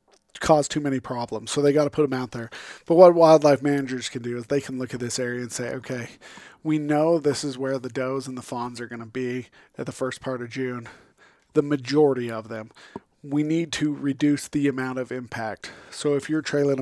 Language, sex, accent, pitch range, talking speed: English, male, American, 125-145 Hz, 230 wpm